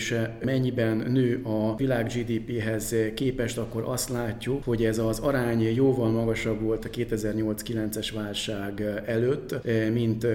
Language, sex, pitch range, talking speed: Hungarian, male, 110-125 Hz, 120 wpm